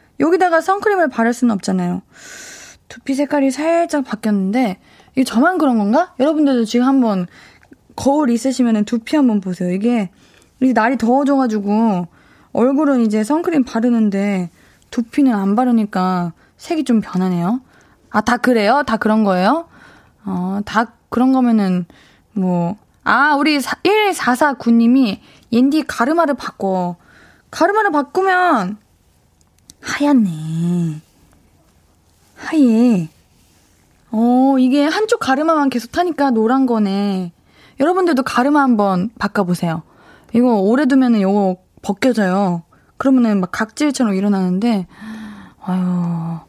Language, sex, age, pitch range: Korean, female, 20-39, 200-285 Hz